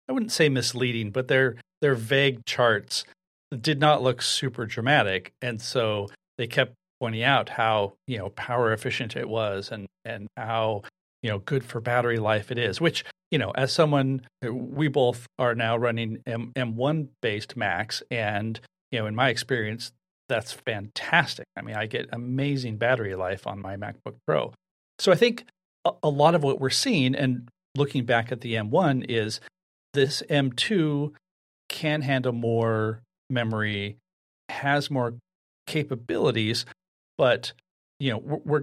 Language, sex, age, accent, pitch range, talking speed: English, male, 40-59, American, 115-140 Hz, 155 wpm